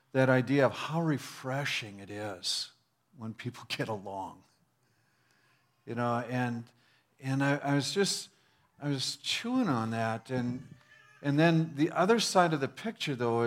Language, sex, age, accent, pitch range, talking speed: English, male, 50-69, American, 115-145 Hz, 150 wpm